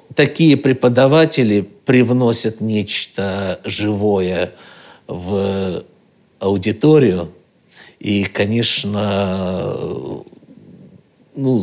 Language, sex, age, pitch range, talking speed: Russian, male, 60-79, 100-120 Hz, 50 wpm